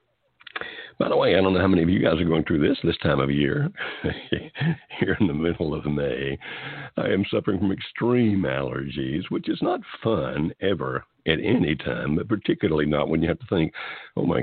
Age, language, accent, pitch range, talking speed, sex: 60-79, English, American, 75-90 Hz, 205 wpm, male